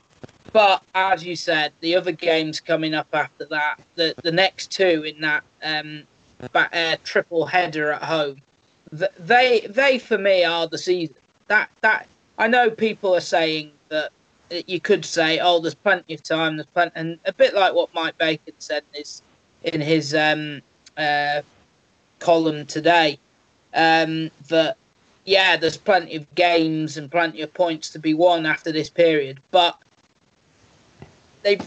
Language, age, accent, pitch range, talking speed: English, 20-39, British, 155-190 Hz, 160 wpm